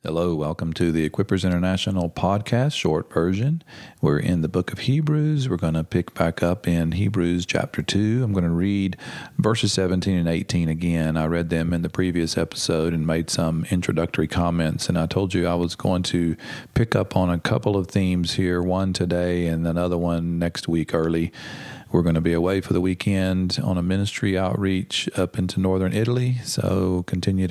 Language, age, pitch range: English, 40-59, 85-100 Hz